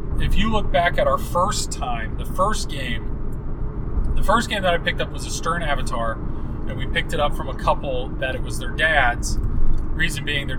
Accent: American